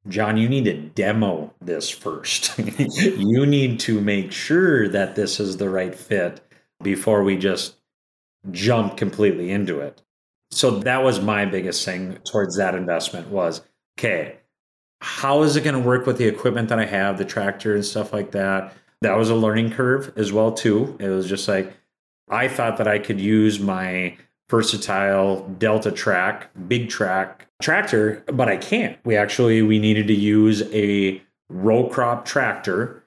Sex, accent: male, American